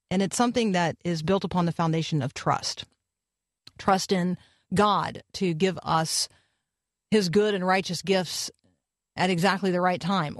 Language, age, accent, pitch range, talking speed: English, 40-59, American, 165-210 Hz, 155 wpm